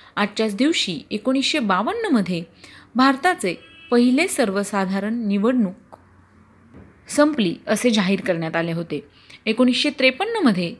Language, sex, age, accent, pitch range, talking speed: Marathi, female, 30-49, native, 190-265 Hz, 90 wpm